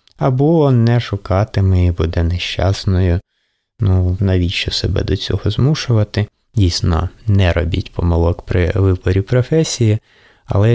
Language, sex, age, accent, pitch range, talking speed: Ukrainian, male, 20-39, native, 95-120 Hz, 110 wpm